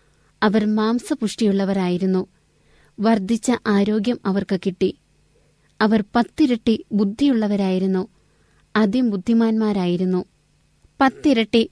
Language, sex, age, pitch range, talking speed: Malayalam, female, 20-39, 200-235 Hz, 60 wpm